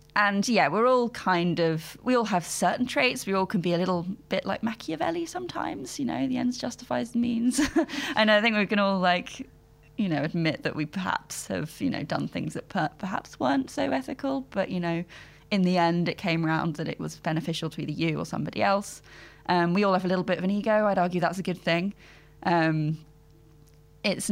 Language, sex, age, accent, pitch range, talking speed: English, female, 20-39, British, 160-210 Hz, 215 wpm